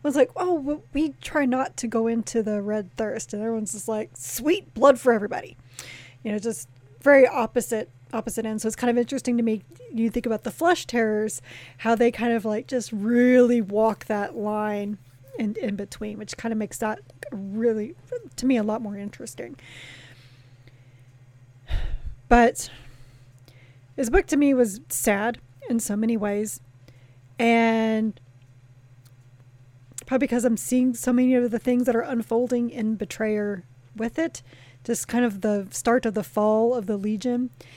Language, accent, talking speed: English, American, 165 wpm